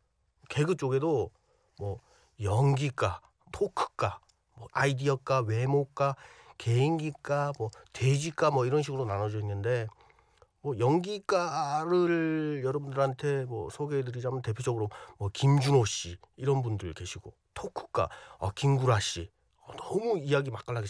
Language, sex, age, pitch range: Korean, male, 40-59, 100-145 Hz